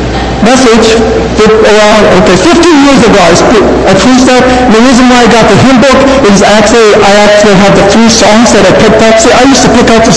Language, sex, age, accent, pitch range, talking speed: English, male, 60-79, American, 210-250 Hz, 225 wpm